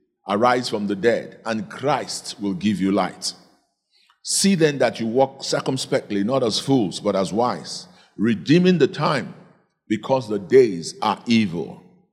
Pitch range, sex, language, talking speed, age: 110-140 Hz, male, English, 150 wpm, 50-69